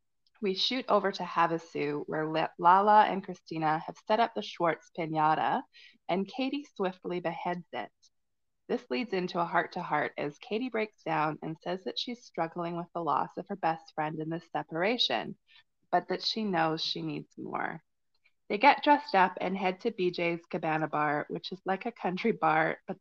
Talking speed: 175 wpm